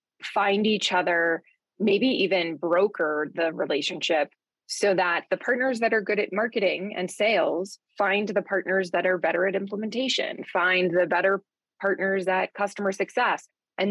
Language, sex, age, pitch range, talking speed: English, female, 20-39, 175-210 Hz, 150 wpm